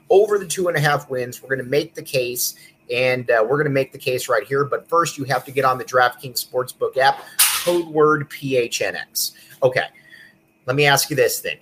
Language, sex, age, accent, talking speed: English, male, 30-49, American, 225 wpm